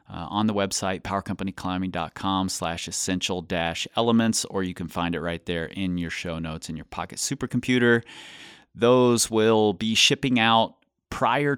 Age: 30-49